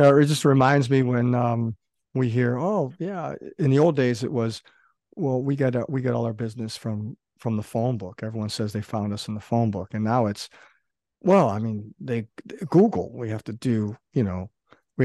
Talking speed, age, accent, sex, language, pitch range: 215 wpm, 50-69, American, male, English, 110-135 Hz